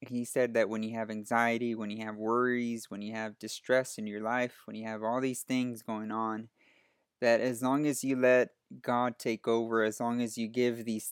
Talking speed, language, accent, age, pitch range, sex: 220 wpm, English, American, 20-39, 110-125 Hz, male